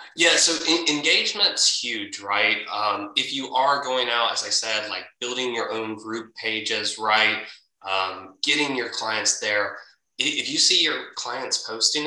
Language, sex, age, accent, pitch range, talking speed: English, male, 20-39, American, 110-155 Hz, 160 wpm